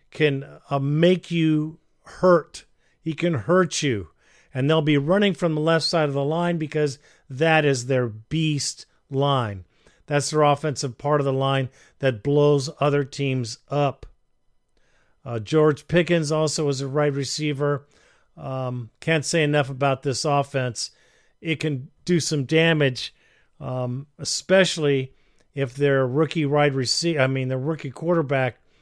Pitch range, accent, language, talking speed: 140-165 Hz, American, English, 150 wpm